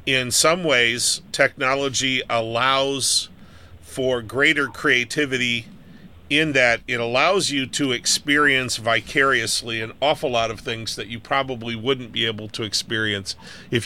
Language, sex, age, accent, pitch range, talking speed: English, male, 40-59, American, 115-140 Hz, 130 wpm